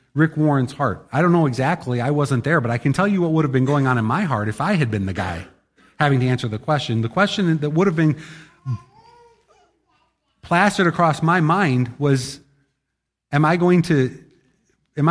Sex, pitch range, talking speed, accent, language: male, 105-150 Hz, 205 wpm, American, English